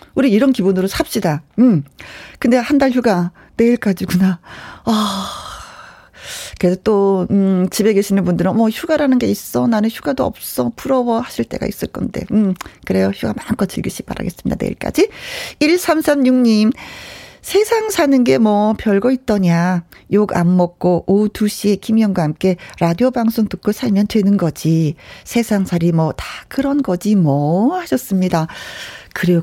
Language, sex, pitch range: Korean, female, 175-245 Hz